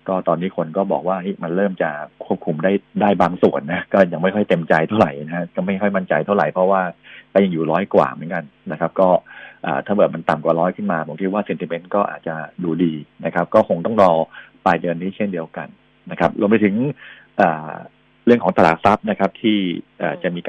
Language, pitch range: Thai, 85-100 Hz